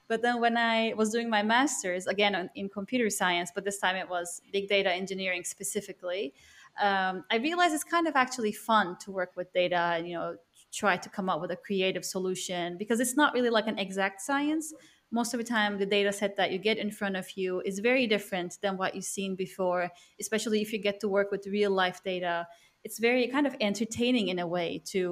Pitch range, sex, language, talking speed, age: 190-230 Hz, female, English, 220 wpm, 20-39